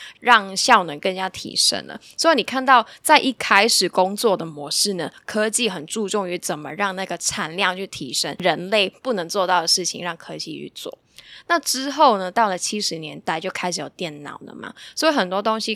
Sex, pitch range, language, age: female, 175-220 Hz, Chinese, 10-29